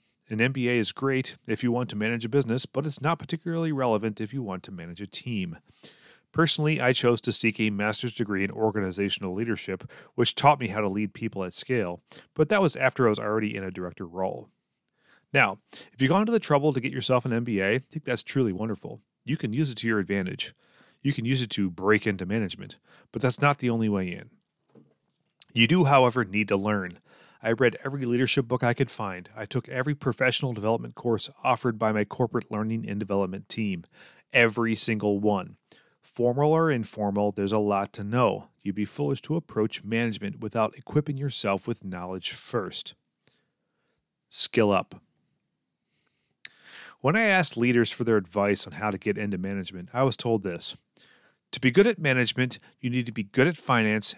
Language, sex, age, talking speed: English, male, 30-49, 195 wpm